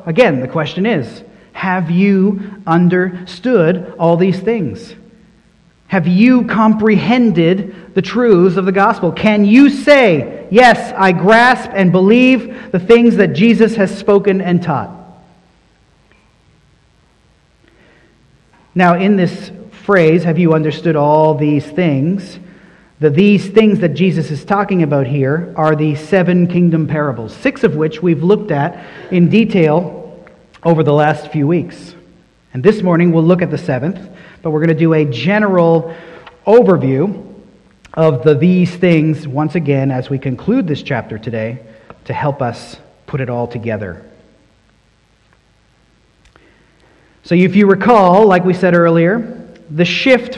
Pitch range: 165-210 Hz